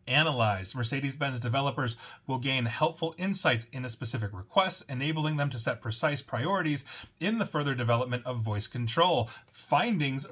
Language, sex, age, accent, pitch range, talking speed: English, male, 30-49, American, 120-155 Hz, 145 wpm